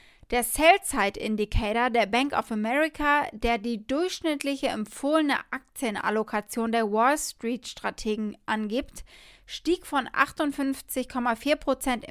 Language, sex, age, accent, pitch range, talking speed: German, female, 20-39, German, 235-280 Hz, 90 wpm